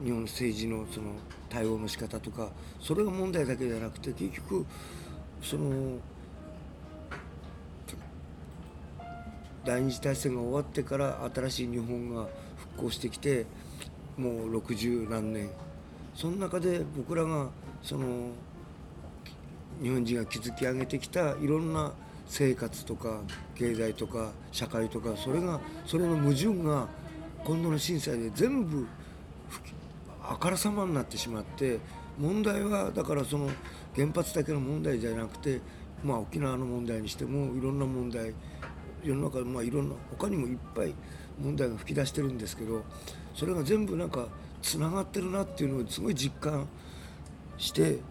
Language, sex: French, male